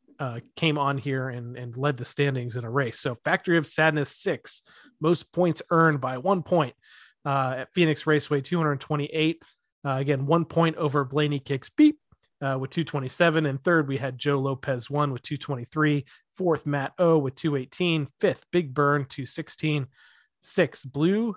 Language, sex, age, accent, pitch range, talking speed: English, male, 30-49, American, 135-160 Hz, 165 wpm